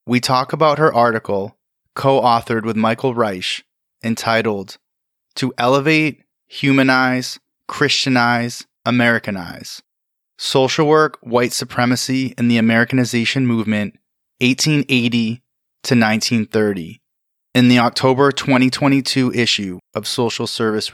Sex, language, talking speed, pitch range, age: male, English, 95 wpm, 115-130 Hz, 20-39